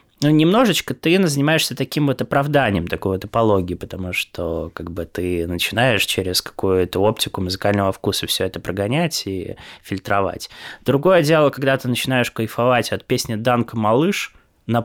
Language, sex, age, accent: Russian, male, 20-39, native